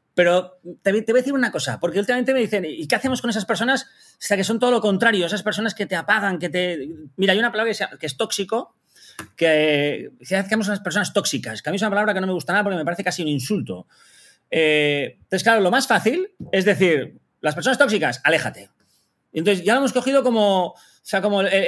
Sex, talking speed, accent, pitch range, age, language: male, 235 wpm, Spanish, 155-220 Hz, 30-49, Spanish